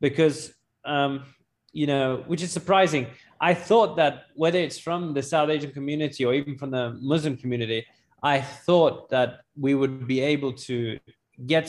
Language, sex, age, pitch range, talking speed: English, male, 20-39, 125-150 Hz, 165 wpm